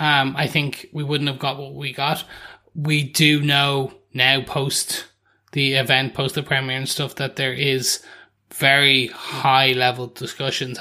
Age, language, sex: 20-39, English, male